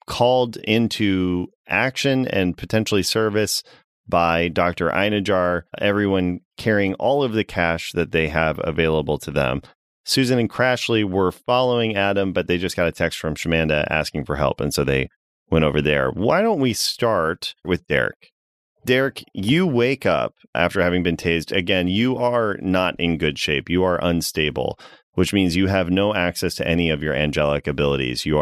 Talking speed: 170 wpm